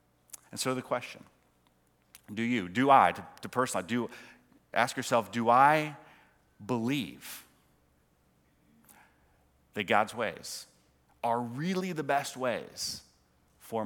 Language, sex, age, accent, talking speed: English, male, 30-49, American, 115 wpm